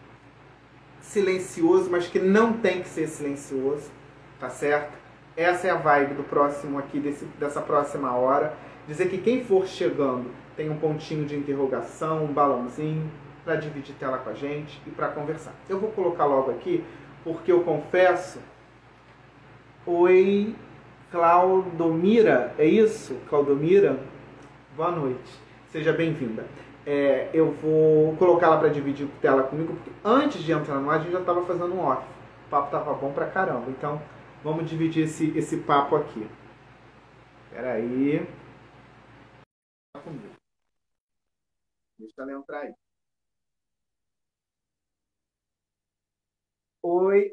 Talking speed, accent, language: 125 wpm, Brazilian, Portuguese